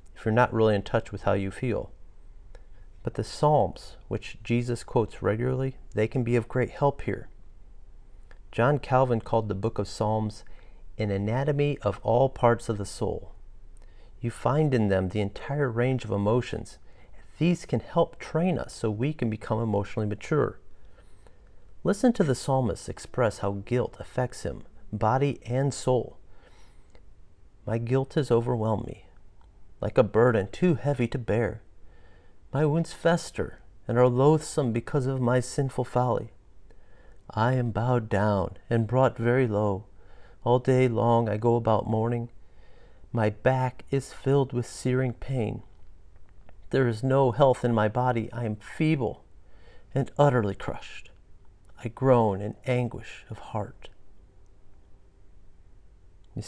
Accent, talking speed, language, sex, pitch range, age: American, 145 wpm, English, male, 95-125 Hz, 40-59